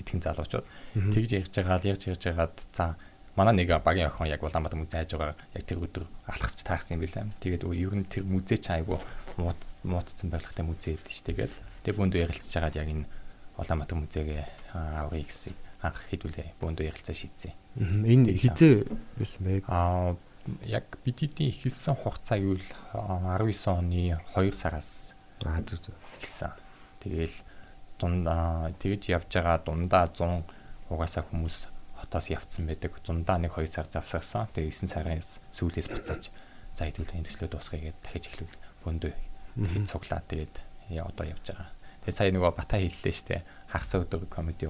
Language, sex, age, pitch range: Korean, male, 20-39, 80-95 Hz